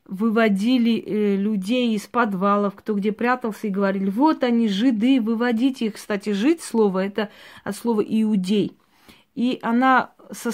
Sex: female